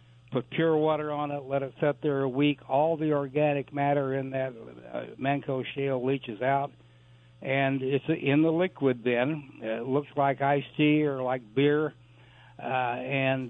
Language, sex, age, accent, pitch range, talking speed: English, male, 60-79, American, 125-150 Hz, 165 wpm